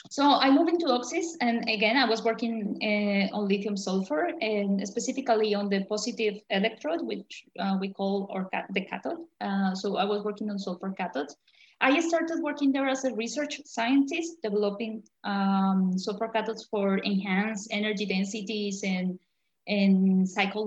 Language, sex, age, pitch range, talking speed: English, female, 20-39, 200-245 Hz, 155 wpm